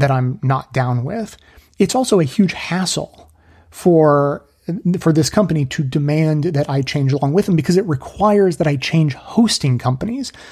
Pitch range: 135-165 Hz